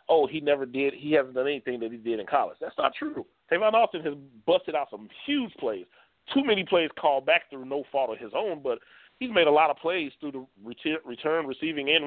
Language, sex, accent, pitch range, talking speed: English, male, American, 125-165 Hz, 240 wpm